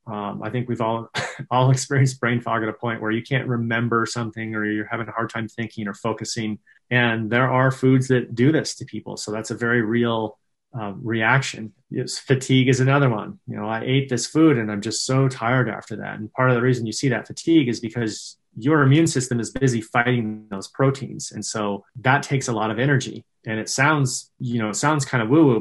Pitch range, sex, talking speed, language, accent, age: 105-125 Hz, male, 225 wpm, English, American, 30-49